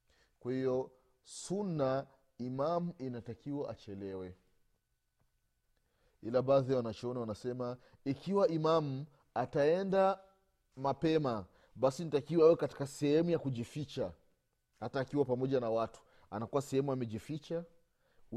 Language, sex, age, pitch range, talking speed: Swahili, male, 30-49, 130-170 Hz, 90 wpm